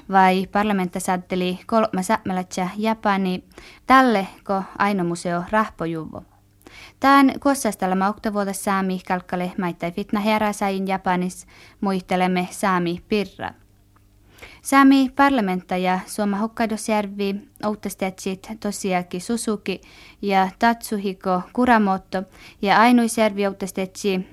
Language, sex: Finnish, female